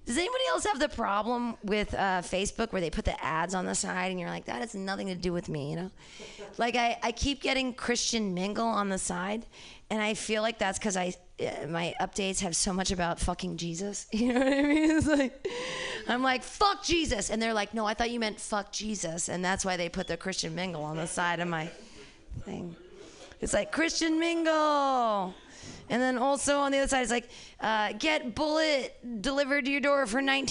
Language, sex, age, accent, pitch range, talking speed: English, female, 30-49, American, 205-280 Hz, 215 wpm